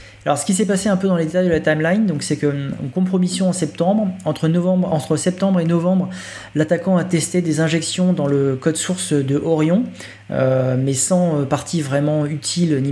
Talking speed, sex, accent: 200 wpm, male, French